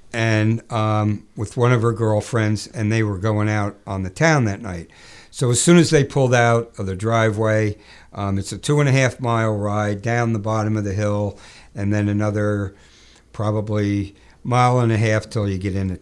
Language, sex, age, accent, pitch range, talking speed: English, male, 60-79, American, 100-115 Hz, 200 wpm